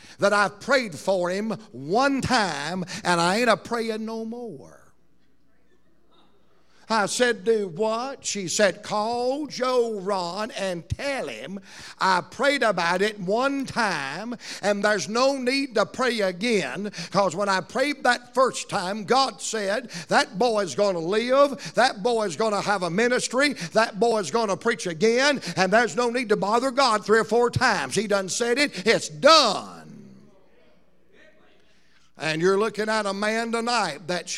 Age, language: 60-79, English